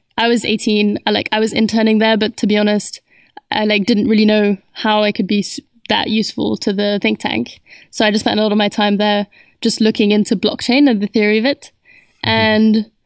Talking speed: 225 wpm